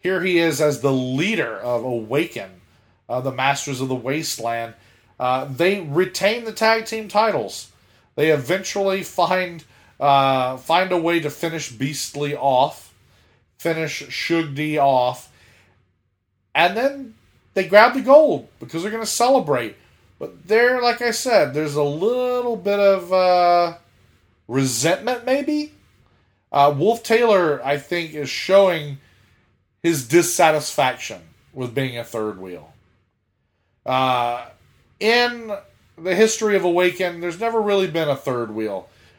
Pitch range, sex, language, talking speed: 125-190 Hz, male, English, 130 wpm